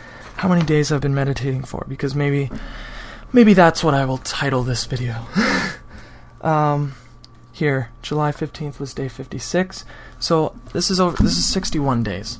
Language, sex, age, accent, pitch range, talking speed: English, male, 20-39, American, 115-140 Hz, 155 wpm